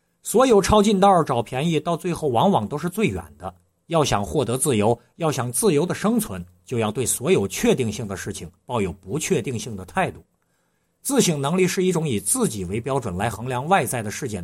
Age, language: 50-69, Chinese